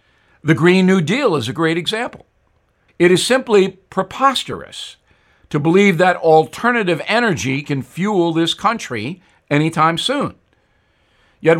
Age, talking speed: 60-79, 125 wpm